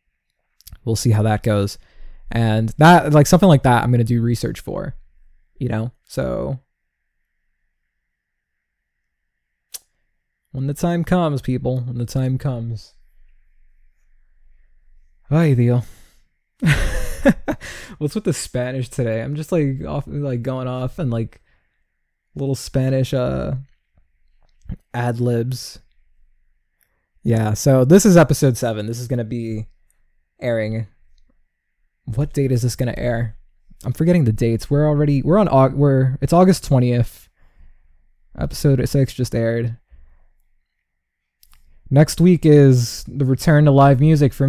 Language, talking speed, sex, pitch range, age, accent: English, 125 wpm, male, 105-140 Hz, 20-39, American